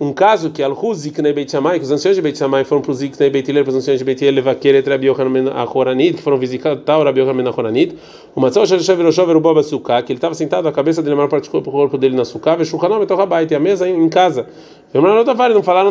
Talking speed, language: 300 wpm, Portuguese